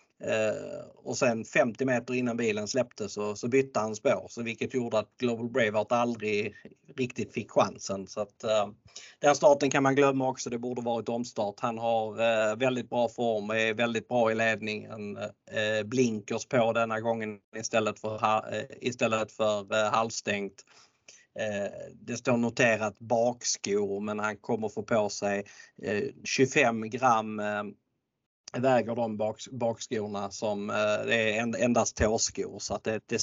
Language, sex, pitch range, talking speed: Swedish, male, 105-125 Hz, 160 wpm